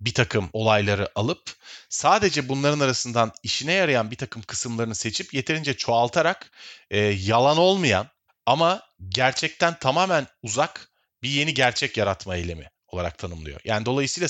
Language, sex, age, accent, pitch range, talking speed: Turkish, male, 30-49, native, 110-145 Hz, 130 wpm